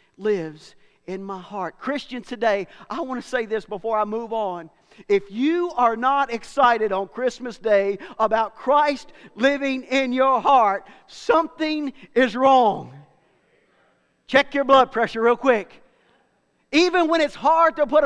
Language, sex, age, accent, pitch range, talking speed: English, male, 50-69, American, 205-270 Hz, 145 wpm